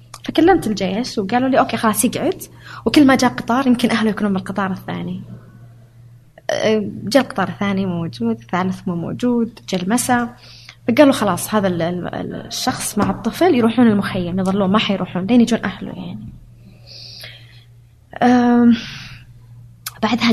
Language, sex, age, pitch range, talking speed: Arabic, female, 20-39, 165-225 Hz, 125 wpm